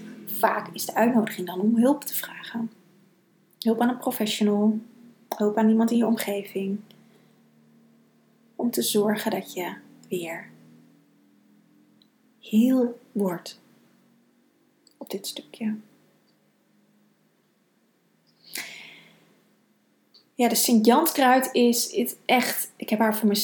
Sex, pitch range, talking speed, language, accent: female, 195-235 Hz, 100 wpm, Dutch, Dutch